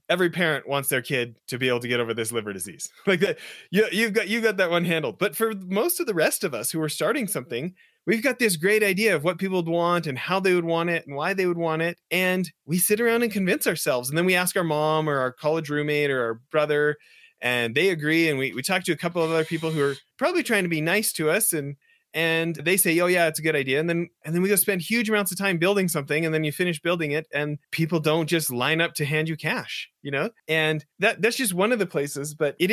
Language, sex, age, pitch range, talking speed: English, male, 30-49, 150-195 Hz, 275 wpm